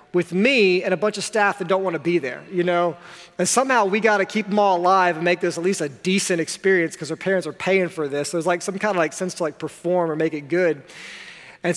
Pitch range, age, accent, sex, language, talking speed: 160-200 Hz, 30-49, American, male, English, 275 wpm